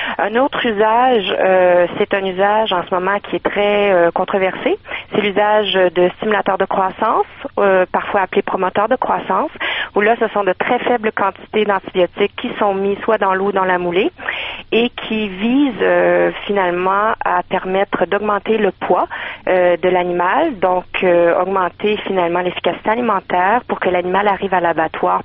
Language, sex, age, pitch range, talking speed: French, female, 40-59, 180-215 Hz, 170 wpm